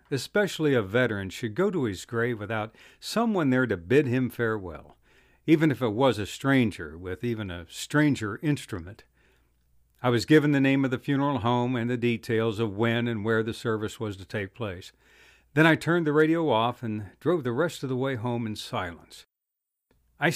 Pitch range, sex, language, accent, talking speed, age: 110-140 Hz, male, English, American, 190 wpm, 60-79